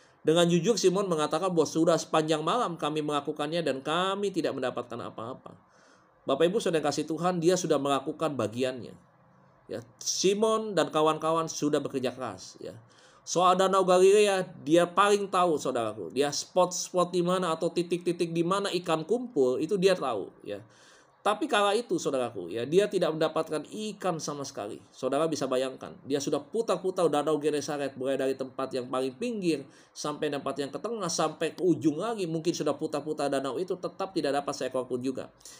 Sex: male